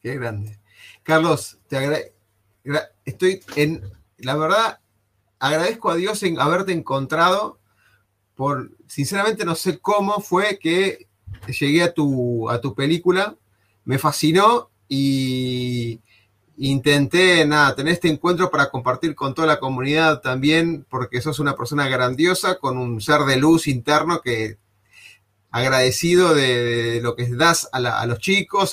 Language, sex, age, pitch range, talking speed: Spanish, male, 30-49, 120-165 Hz, 135 wpm